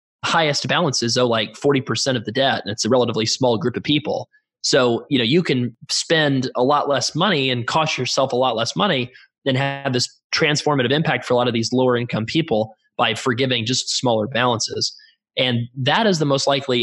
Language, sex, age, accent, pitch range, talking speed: English, male, 20-39, American, 120-140 Hz, 205 wpm